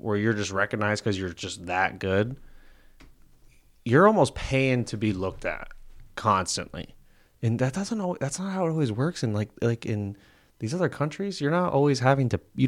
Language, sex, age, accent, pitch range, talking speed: English, male, 20-39, American, 100-125 Hz, 190 wpm